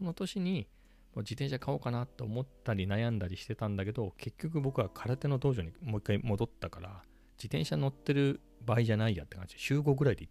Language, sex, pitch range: Japanese, male, 90-130 Hz